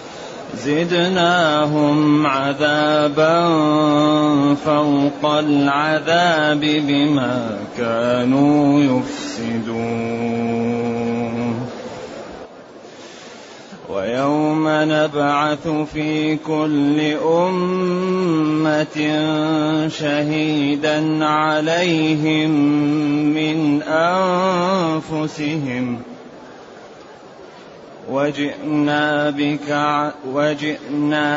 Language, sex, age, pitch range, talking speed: Arabic, male, 30-49, 145-155 Hz, 35 wpm